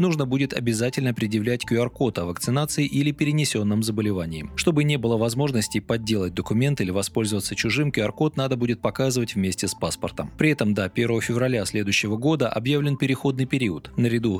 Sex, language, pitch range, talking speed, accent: male, Russian, 100-135 Hz, 155 wpm, native